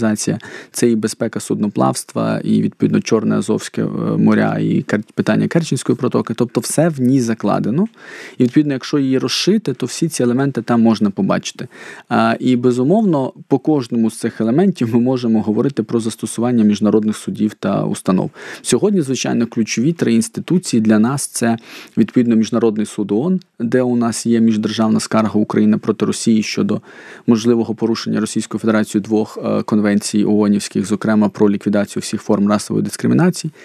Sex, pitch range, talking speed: male, 110-125 Hz, 150 wpm